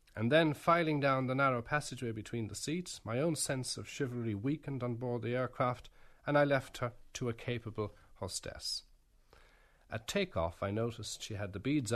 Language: English